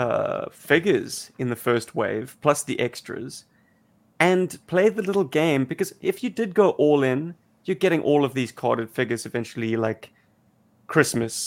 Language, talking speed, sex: English, 160 wpm, male